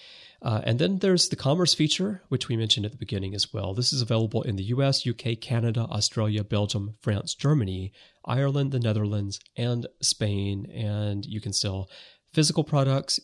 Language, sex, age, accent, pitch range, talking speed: English, male, 30-49, American, 105-135 Hz, 170 wpm